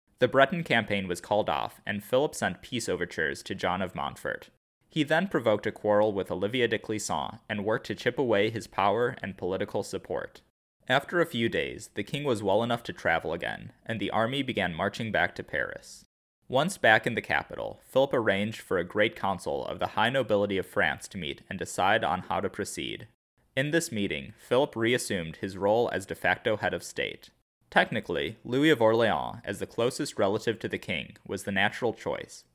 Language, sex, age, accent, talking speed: English, male, 20-39, American, 195 wpm